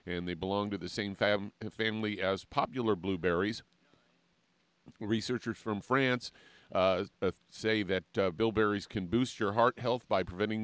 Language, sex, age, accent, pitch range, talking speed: English, male, 50-69, American, 95-115 Hz, 150 wpm